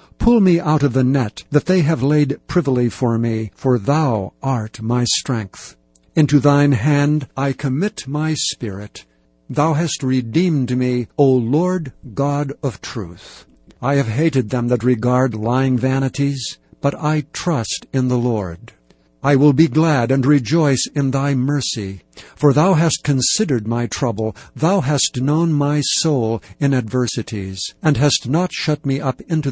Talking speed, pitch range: 155 wpm, 120-150 Hz